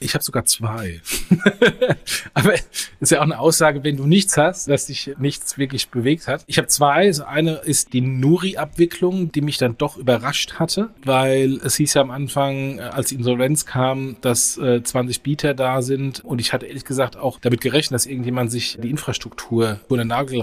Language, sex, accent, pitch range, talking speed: German, male, German, 120-140 Hz, 190 wpm